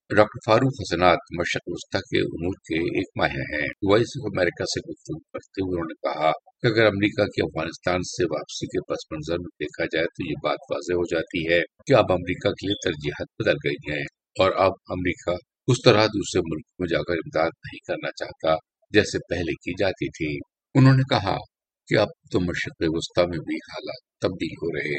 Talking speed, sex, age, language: 190 wpm, male, 50-69, Urdu